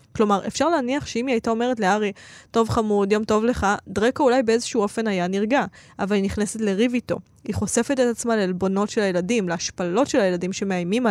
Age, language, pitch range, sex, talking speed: 20-39, Hebrew, 200-245 Hz, female, 190 wpm